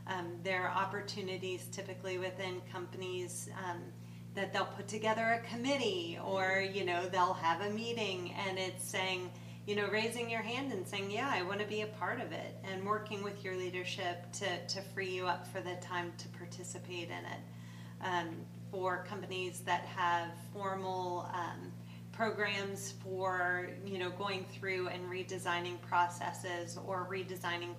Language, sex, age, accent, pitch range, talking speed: English, female, 30-49, American, 115-190 Hz, 160 wpm